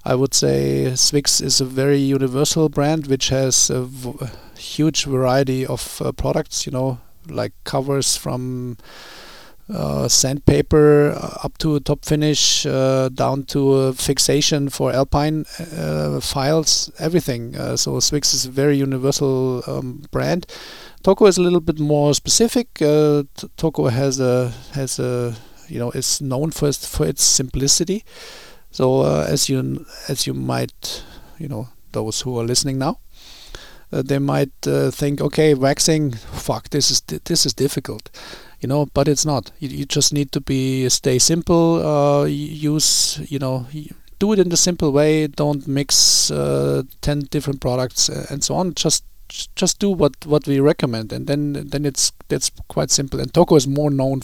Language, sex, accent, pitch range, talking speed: Finnish, male, German, 130-150 Hz, 165 wpm